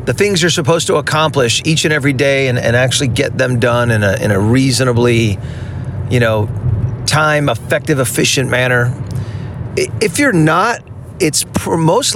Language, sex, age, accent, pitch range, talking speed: English, male, 40-59, American, 120-150 Hz, 150 wpm